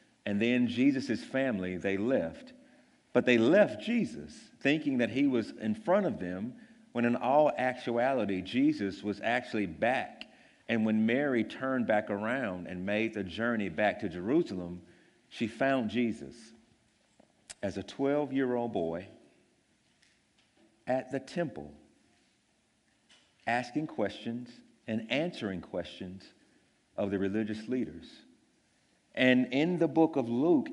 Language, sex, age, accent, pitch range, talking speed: English, male, 50-69, American, 110-155 Hz, 125 wpm